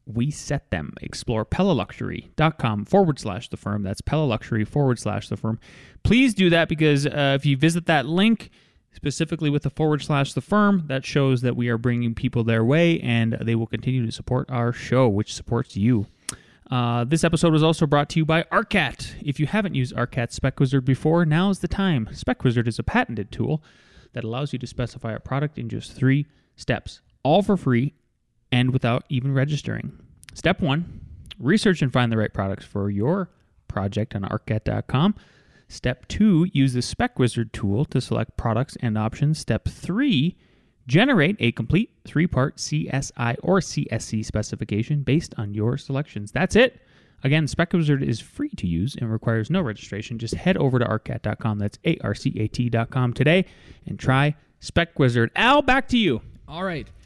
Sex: male